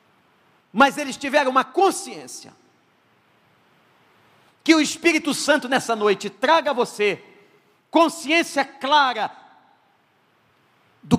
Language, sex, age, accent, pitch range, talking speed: Portuguese, male, 50-69, Brazilian, 180-250 Hz, 90 wpm